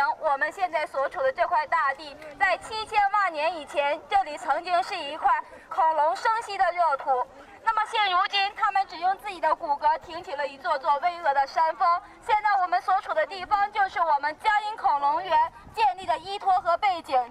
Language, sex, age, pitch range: Chinese, female, 20-39, 295-400 Hz